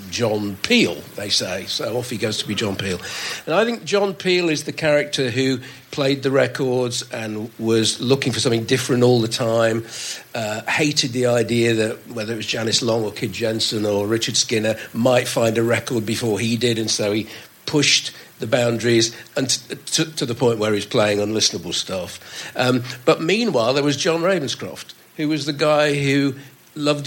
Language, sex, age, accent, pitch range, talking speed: English, male, 50-69, British, 115-145 Hz, 190 wpm